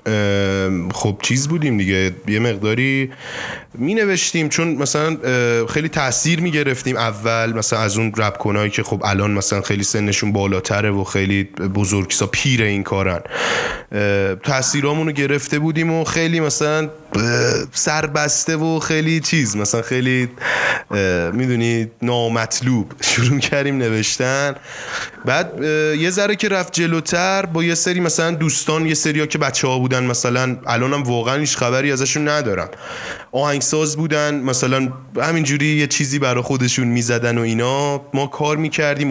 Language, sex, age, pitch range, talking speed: English, male, 20-39, 110-150 Hz, 135 wpm